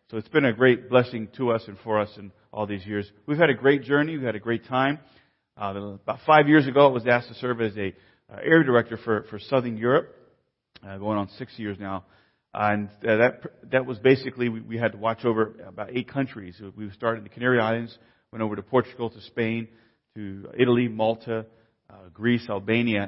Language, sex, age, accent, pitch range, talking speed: English, male, 40-59, American, 105-125 Hz, 215 wpm